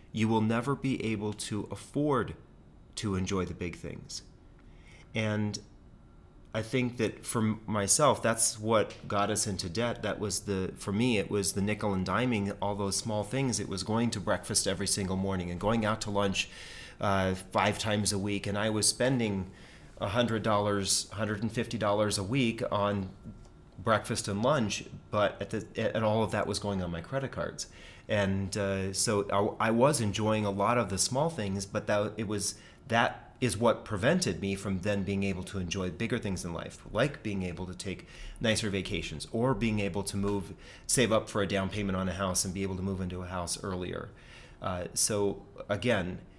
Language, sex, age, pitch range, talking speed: English, male, 30-49, 95-110 Hz, 190 wpm